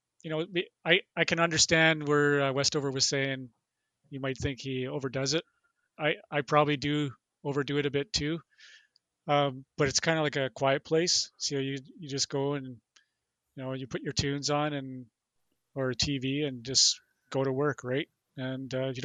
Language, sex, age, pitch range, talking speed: English, male, 30-49, 130-145 Hz, 185 wpm